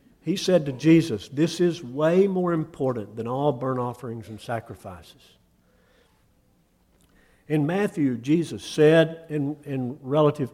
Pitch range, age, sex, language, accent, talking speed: 125-170 Hz, 50-69, male, English, American, 125 wpm